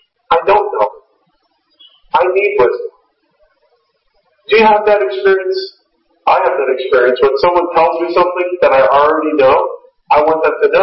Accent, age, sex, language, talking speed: American, 40-59, male, English, 160 wpm